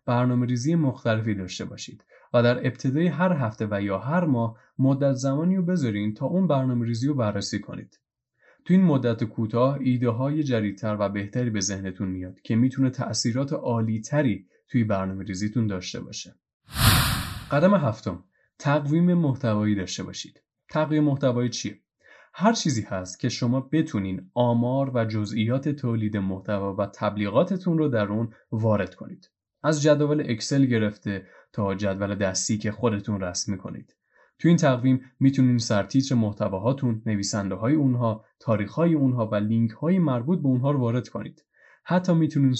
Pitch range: 105-140 Hz